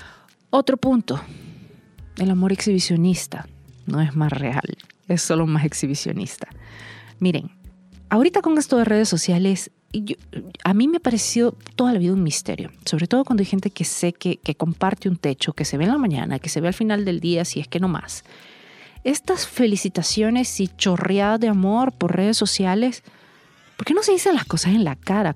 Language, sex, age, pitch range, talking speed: Spanish, female, 40-59, 165-225 Hz, 185 wpm